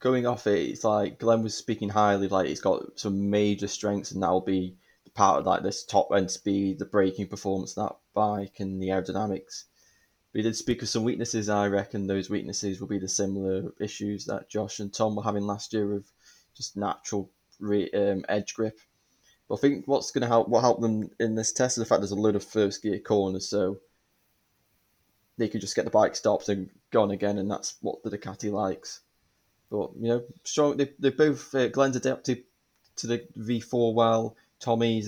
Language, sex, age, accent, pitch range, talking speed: English, male, 10-29, British, 100-115 Hz, 210 wpm